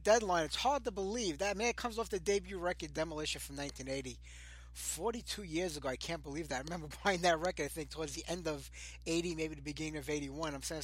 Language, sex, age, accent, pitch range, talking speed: English, male, 20-39, American, 140-175 Hz, 225 wpm